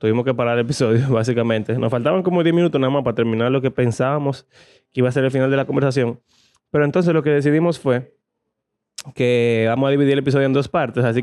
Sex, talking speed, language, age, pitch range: male, 230 wpm, Spanish, 20-39, 115-135 Hz